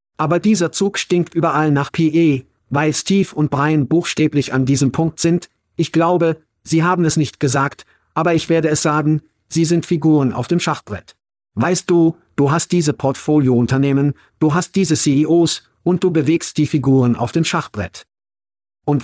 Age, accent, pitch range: 50-69, German, 135-165 Hz